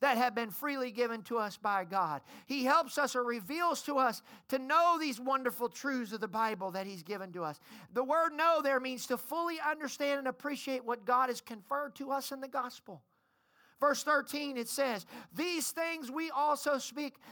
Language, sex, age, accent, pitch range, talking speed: English, male, 40-59, American, 235-295 Hz, 200 wpm